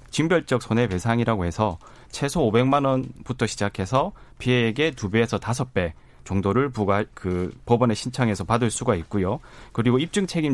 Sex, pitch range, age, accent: male, 110-145 Hz, 30-49, native